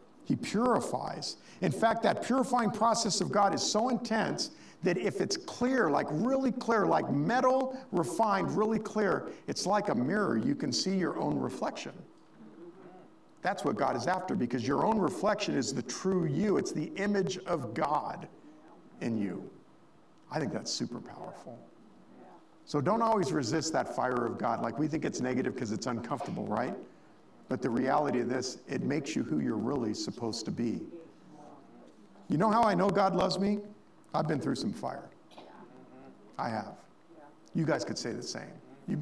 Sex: male